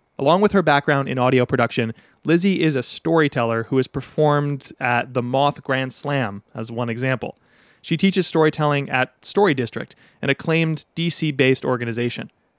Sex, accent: male, American